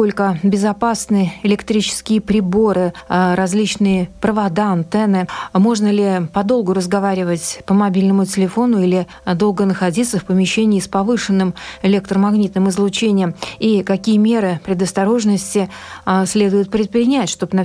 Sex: female